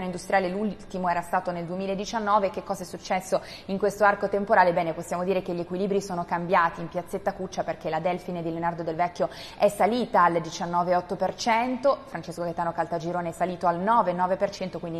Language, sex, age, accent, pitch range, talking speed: Italian, female, 20-39, native, 170-200 Hz, 175 wpm